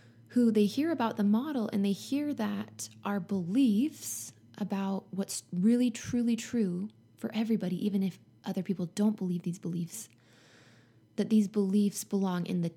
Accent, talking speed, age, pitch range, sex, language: American, 155 wpm, 20-39, 185-225 Hz, female, English